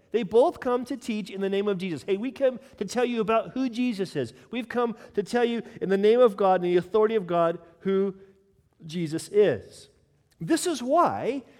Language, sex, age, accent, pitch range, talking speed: English, male, 40-59, American, 160-235 Hz, 210 wpm